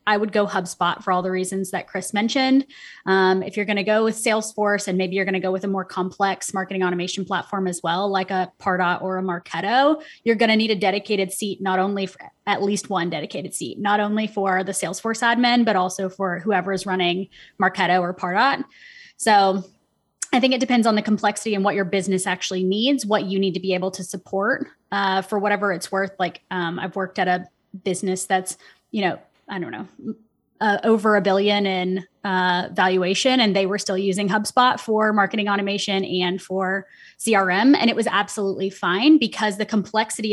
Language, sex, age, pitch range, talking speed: English, female, 20-39, 185-215 Hz, 205 wpm